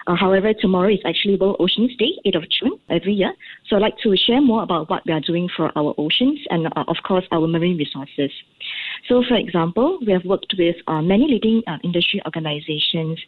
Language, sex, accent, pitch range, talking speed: English, female, Malaysian, 170-215 Hz, 215 wpm